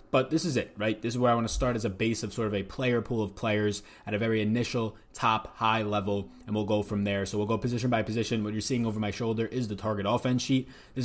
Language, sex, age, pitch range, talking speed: English, male, 20-39, 100-120 Hz, 290 wpm